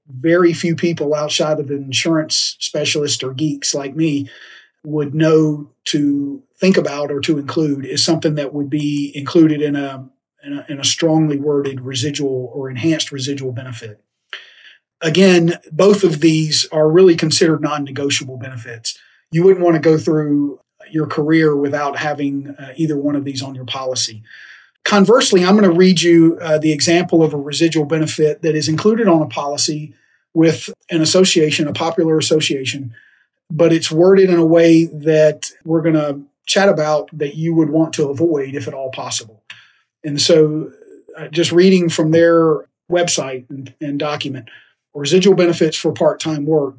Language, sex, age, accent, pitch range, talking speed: English, male, 40-59, American, 145-165 Hz, 165 wpm